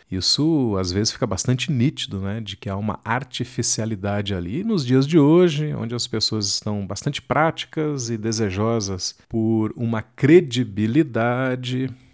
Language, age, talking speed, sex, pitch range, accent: Portuguese, 40-59, 145 wpm, male, 100-130 Hz, Brazilian